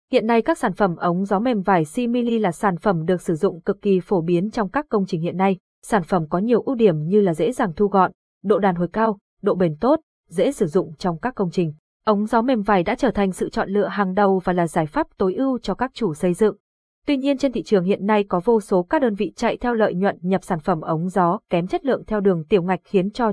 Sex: female